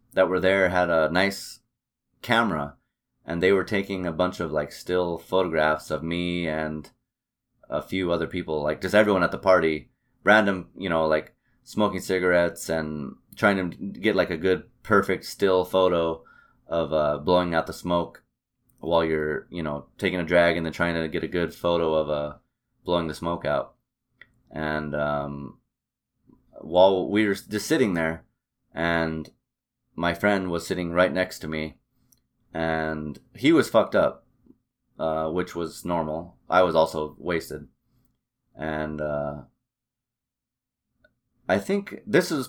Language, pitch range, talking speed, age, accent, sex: English, 80-100 Hz, 155 wpm, 20-39, American, male